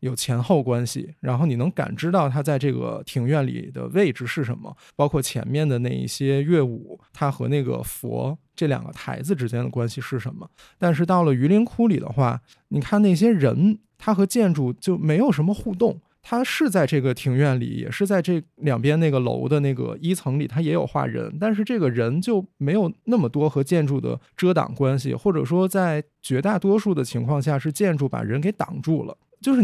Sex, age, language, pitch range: male, 20-39, Chinese, 130-175 Hz